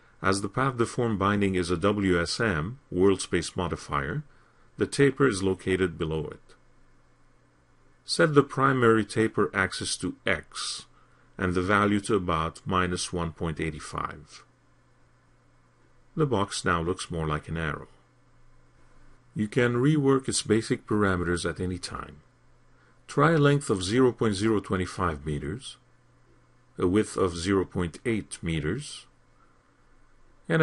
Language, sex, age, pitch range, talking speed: English, male, 40-59, 85-125 Hz, 120 wpm